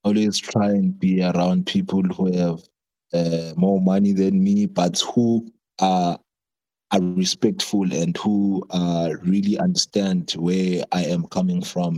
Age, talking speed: 30-49, 140 wpm